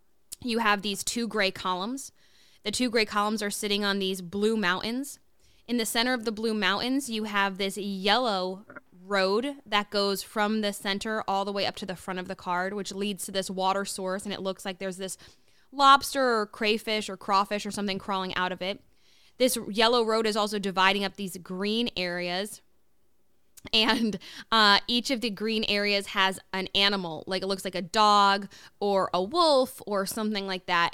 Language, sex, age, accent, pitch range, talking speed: English, female, 10-29, American, 190-220 Hz, 190 wpm